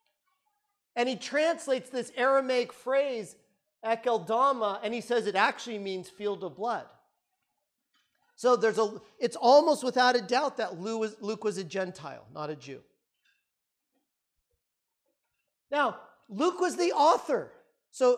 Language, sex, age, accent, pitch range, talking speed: English, male, 40-59, American, 215-285 Hz, 125 wpm